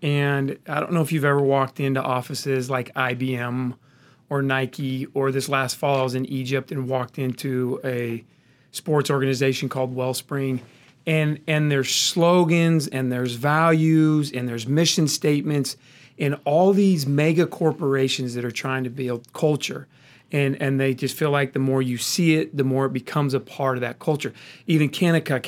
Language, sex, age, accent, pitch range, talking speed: English, male, 40-59, American, 130-150 Hz, 175 wpm